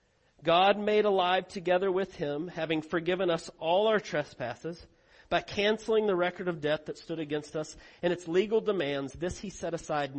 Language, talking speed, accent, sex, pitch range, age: English, 175 wpm, American, male, 150-190 Hz, 40-59